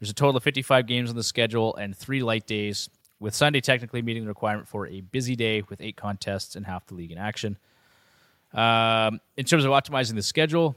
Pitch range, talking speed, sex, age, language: 105-125 Hz, 215 wpm, male, 20-39, English